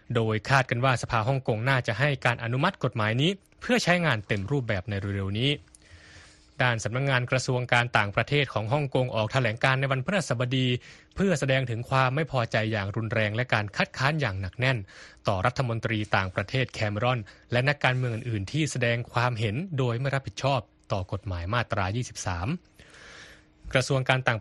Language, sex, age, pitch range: Thai, male, 20-39, 110-140 Hz